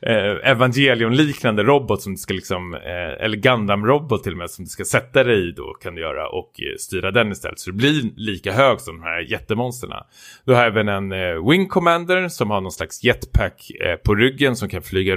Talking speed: 200 wpm